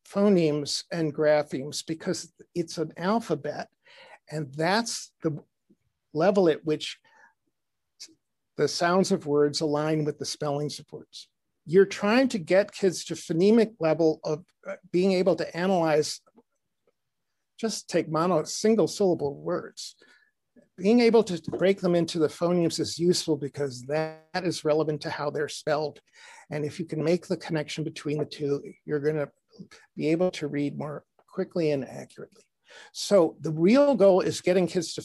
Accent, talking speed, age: American, 150 wpm, 50-69